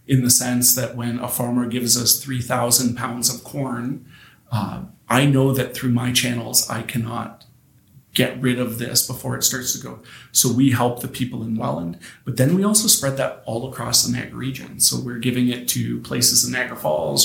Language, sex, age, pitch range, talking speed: English, male, 40-59, 120-130 Hz, 200 wpm